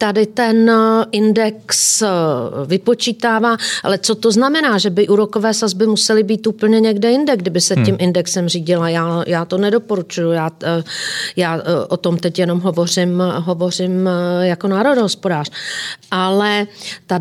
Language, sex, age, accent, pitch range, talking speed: Czech, female, 40-59, native, 185-235 Hz, 135 wpm